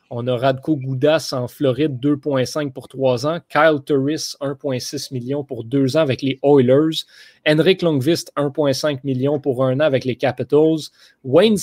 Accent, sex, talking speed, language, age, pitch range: Canadian, male, 160 wpm, French, 30-49, 130-150 Hz